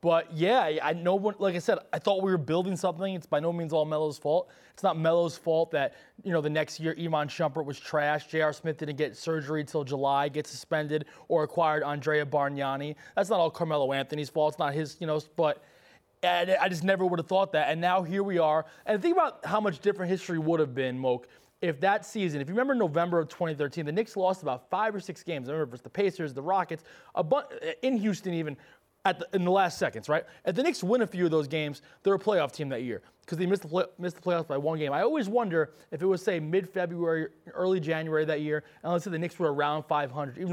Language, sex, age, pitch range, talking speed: English, male, 20-39, 150-190 Hz, 250 wpm